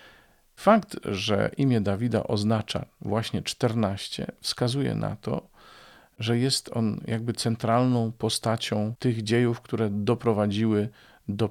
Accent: native